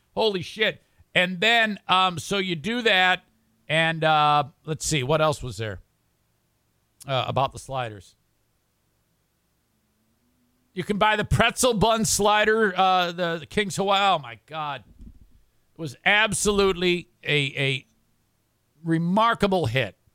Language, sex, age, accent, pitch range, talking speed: English, male, 50-69, American, 125-200 Hz, 130 wpm